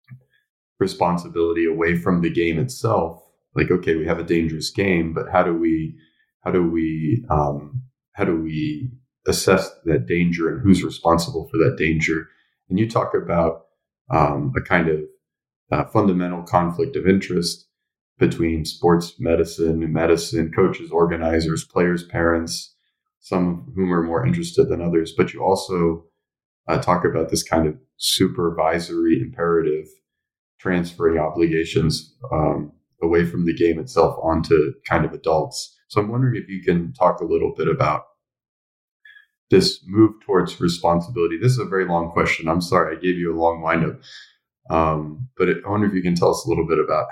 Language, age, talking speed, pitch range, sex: English, 30-49, 160 wpm, 80-120 Hz, male